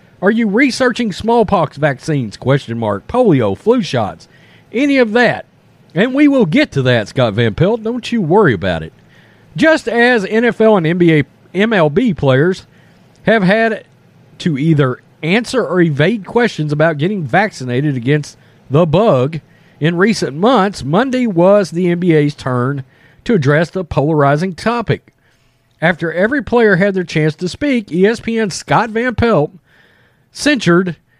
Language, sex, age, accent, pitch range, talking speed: English, male, 40-59, American, 145-225 Hz, 140 wpm